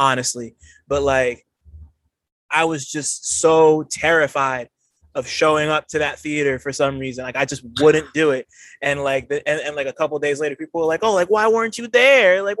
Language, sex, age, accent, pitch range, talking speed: English, male, 20-39, American, 130-175 Hz, 200 wpm